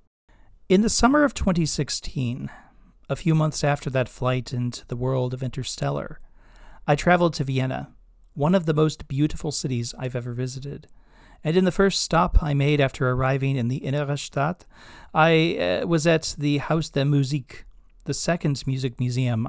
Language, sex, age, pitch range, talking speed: English, male, 40-59, 125-150 Hz, 165 wpm